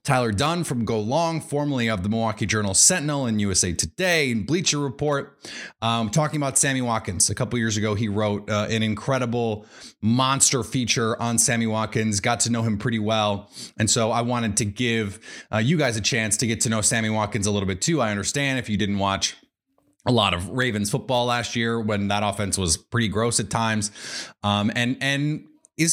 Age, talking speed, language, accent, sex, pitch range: 30-49, 205 wpm, English, American, male, 110-140 Hz